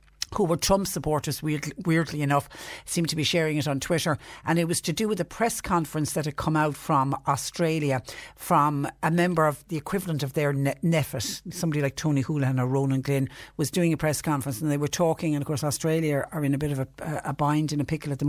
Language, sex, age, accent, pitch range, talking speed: English, female, 60-79, Irish, 140-160 Hz, 235 wpm